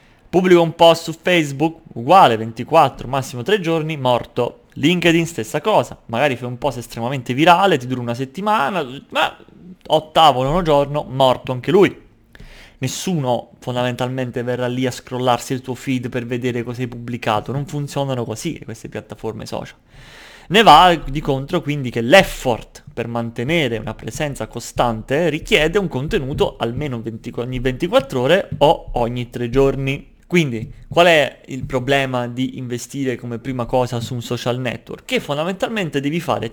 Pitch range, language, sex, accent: 120-165 Hz, Italian, male, native